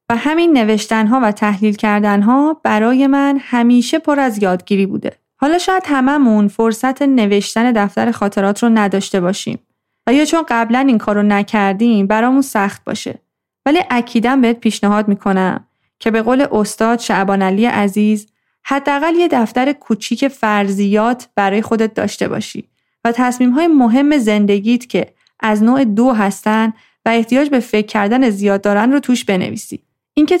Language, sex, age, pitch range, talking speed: Persian, female, 30-49, 210-270 Hz, 145 wpm